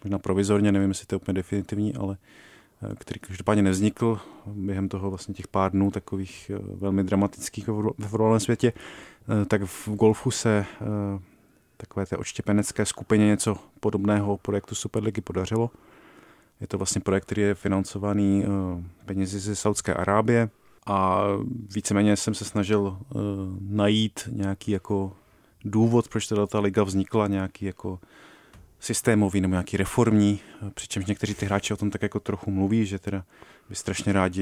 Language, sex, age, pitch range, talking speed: Czech, male, 30-49, 95-105 Hz, 145 wpm